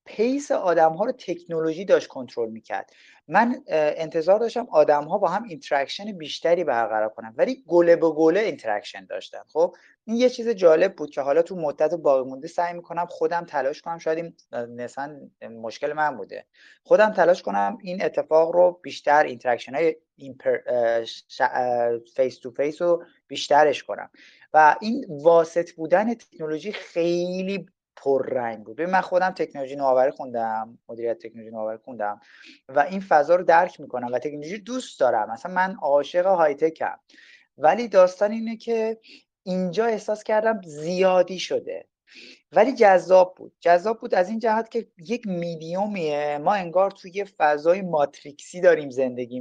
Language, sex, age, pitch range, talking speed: Persian, male, 30-49, 145-195 Hz, 145 wpm